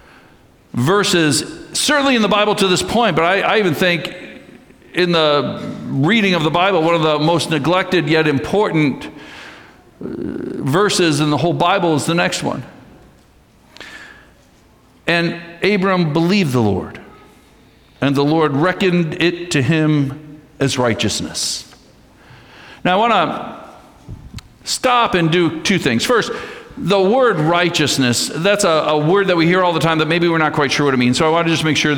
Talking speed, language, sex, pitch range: 165 wpm, English, male, 130-175 Hz